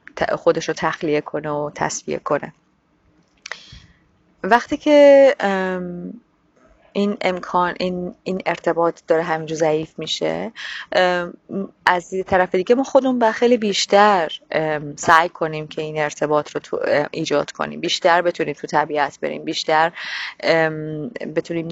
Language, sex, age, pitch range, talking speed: Persian, female, 30-49, 155-185 Hz, 115 wpm